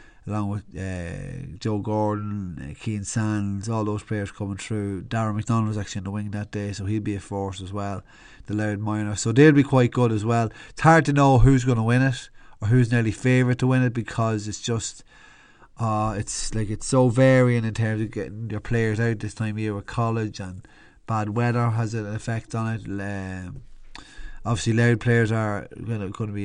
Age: 30-49